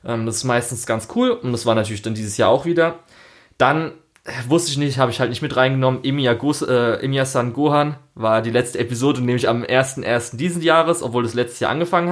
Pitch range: 110-130 Hz